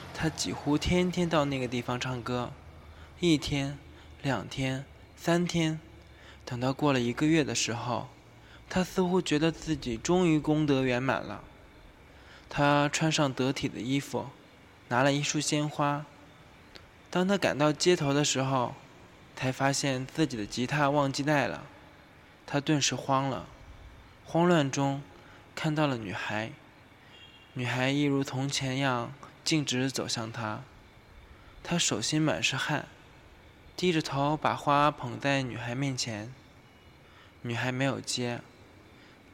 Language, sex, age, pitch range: Chinese, male, 20-39, 110-145 Hz